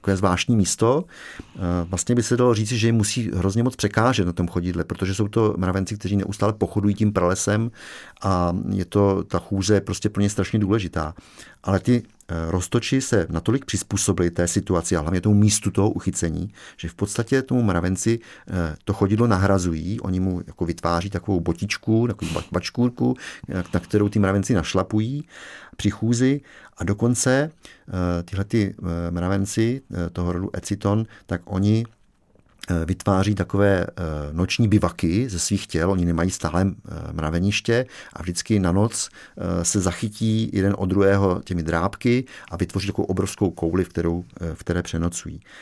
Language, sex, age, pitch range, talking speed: Czech, male, 50-69, 90-110 Hz, 150 wpm